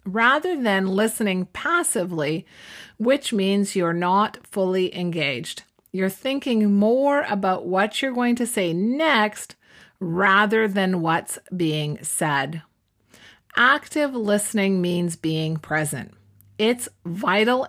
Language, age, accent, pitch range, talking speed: English, 40-59, American, 175-235 Hz, 110 wpm